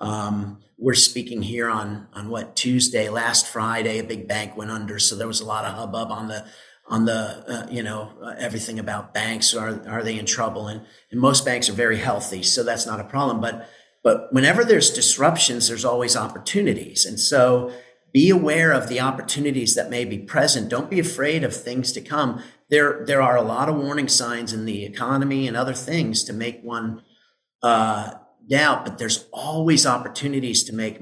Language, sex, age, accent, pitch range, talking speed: English, male, 40-59, American, 110-130 Hz, 195 wpm